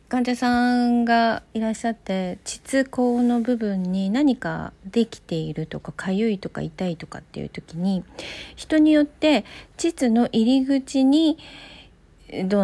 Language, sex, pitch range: Japanese, female, 180-255 Hz